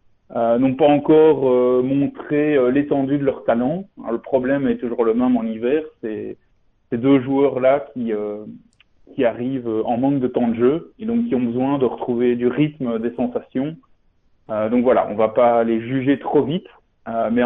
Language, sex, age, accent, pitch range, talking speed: French, male, 20-39, French, 110-135 Hz, 195 wpm